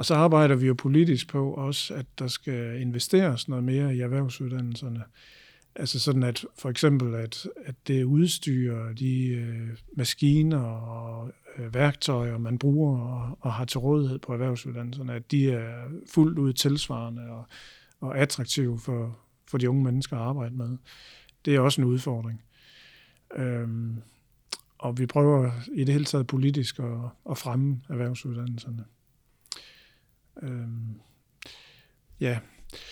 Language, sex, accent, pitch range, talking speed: Danish, male, native, 125-145 Hz, 130 wpm